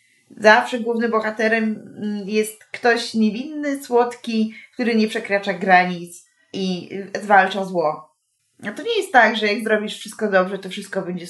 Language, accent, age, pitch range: Polish, native, 20-39, 195-245 Hz